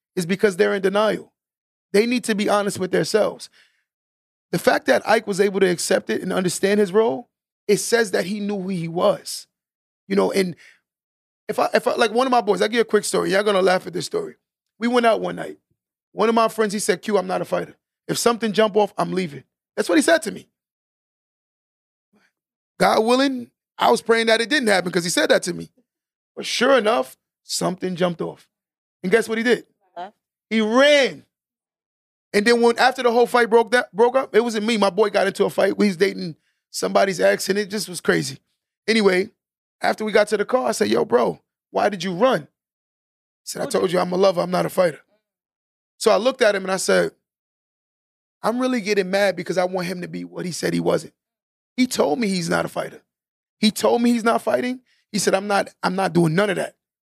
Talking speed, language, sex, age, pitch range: 230 wpm, English, male, 30-49, 185-230 Hz